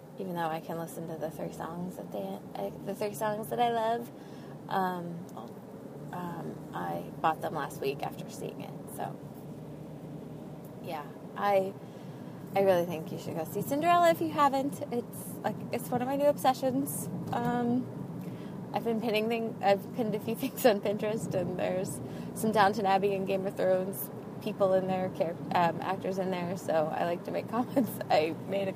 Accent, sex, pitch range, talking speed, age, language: American, female, 185-245 Hz, 185 wpm, 20-39, English